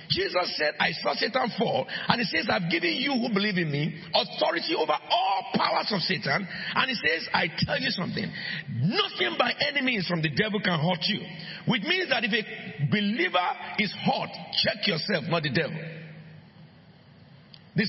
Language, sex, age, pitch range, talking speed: English, male, 50-69, 170-215 Hz, 180 wpm